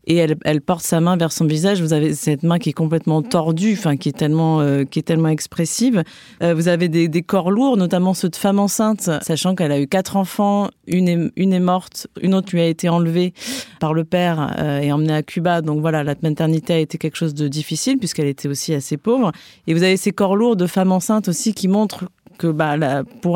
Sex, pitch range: female, 160-190 Hz